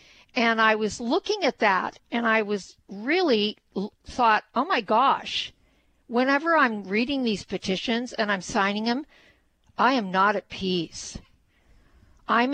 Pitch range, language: 185-225 Hz, English